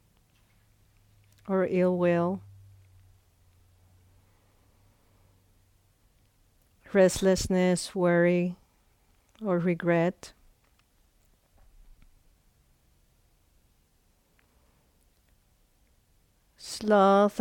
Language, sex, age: English, female, 40-59